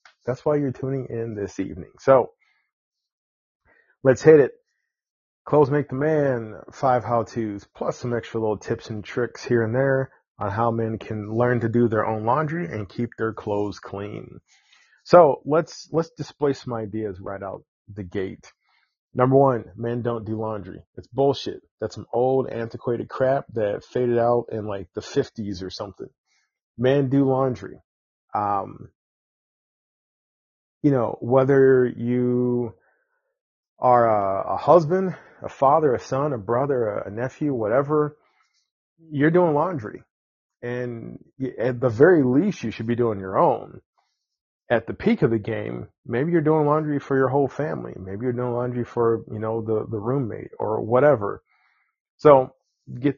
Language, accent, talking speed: English, American, 155 wpm